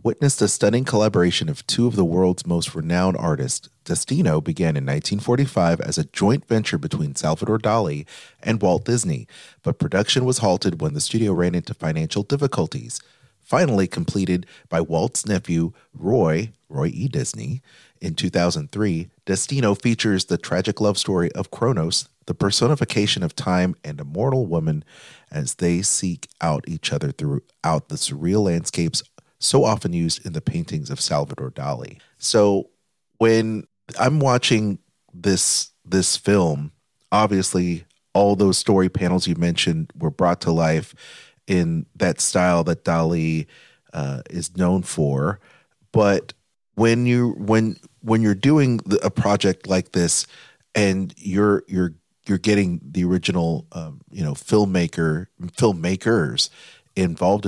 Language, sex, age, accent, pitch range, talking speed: English, male, 30-49, American, 90-120 Hz, 145 wpm